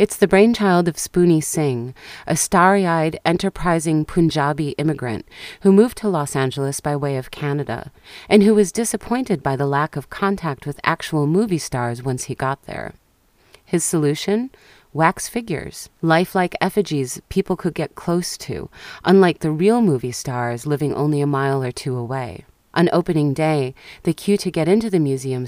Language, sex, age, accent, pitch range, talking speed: English, female, 30-49, American, 135-180 Hz, 165 wpm